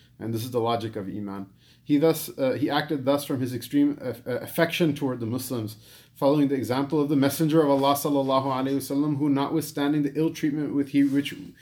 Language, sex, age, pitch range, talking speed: English, male, 30-49, 125-145 Hz, 205 wpm